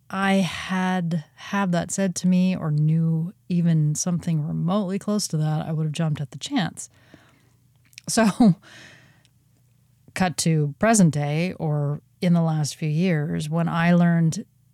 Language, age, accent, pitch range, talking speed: English, 30-49, American, 145-180 Hz, 145 wpm